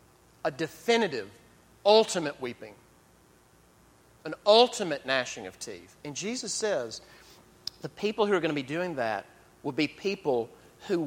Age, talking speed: 40-59, 135 wpm